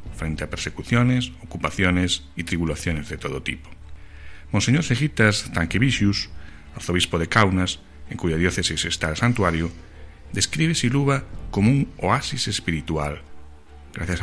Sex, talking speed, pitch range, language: male, 120 wpm, 75-100 Hz, Spanish